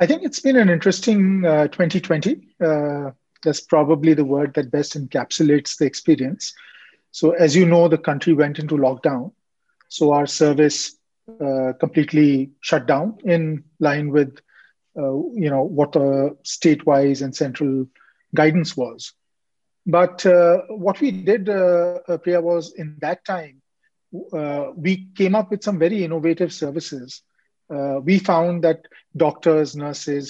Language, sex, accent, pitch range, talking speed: English, male, Indian, 150-180 Hz, 145 wpm